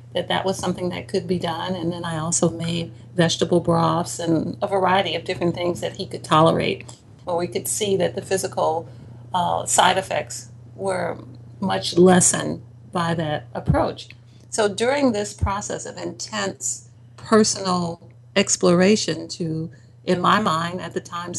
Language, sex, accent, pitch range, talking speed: English, female, American, 120-190 Hz, 160 wpm